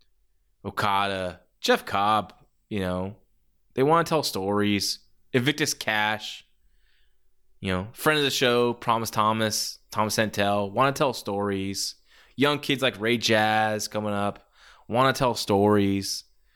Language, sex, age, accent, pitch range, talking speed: English, male, 20-39, American, 100-135 Hz, 125 wpm